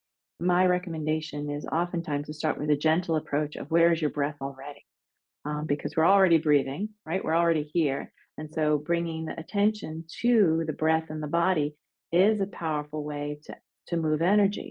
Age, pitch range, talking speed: 40-59, 150-185 Hz, 180 wpm